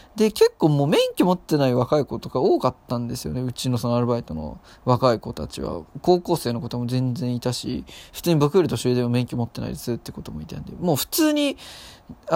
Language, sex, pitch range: Japanese, male, 125-185 Hz